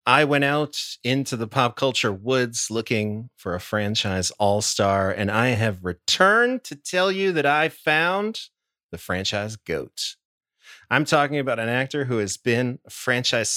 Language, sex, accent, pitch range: English, male, American, 105-145 Hz